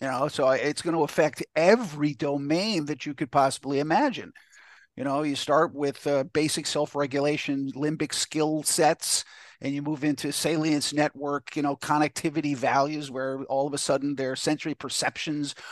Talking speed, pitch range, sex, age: 165 wpm, 145-170 Hz, male, 50-69